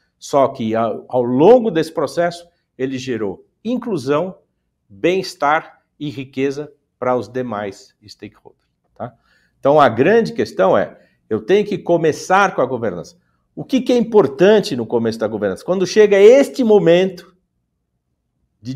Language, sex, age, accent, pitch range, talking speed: Portuguese, male, 50-69, Brazilian, 120-180 Hz, 140 wpm